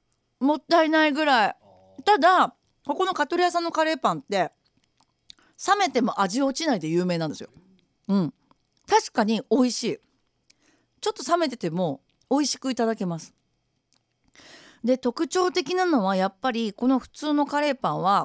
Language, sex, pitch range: Japanese, female, 195-315 Hz